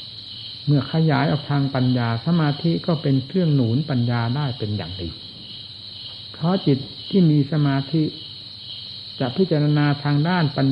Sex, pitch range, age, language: male, 110-145 Hz, 60-79, Thai